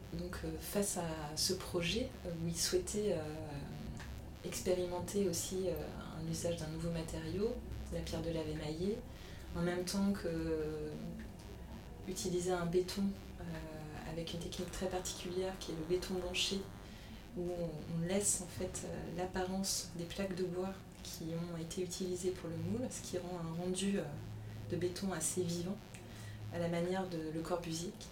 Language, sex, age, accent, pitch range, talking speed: French, female, 20-39, French, 160-185 Hz, 160 wpm